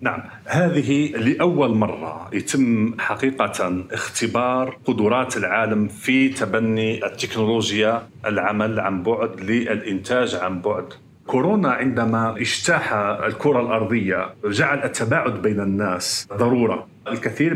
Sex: male